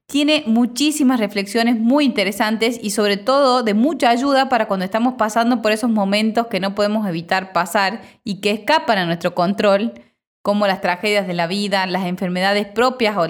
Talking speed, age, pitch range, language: 175 wpm, 20-39, 195-250 Hz, Spanish